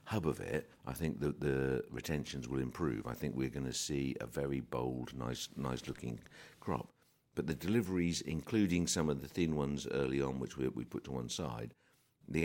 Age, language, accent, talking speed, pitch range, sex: 50-69, English, British, 200 wpm, 65-80 Hz, male